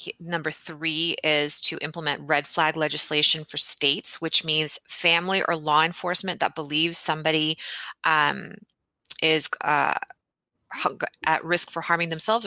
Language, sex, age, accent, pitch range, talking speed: English, female, 30-49, American, 145-170 Hz, 130 wpm